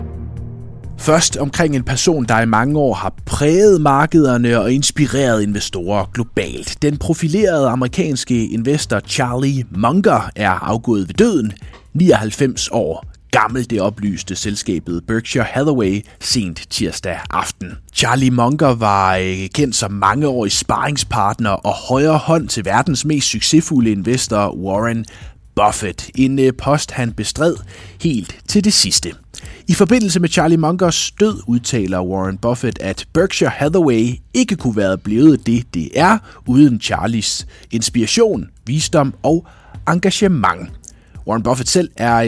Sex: male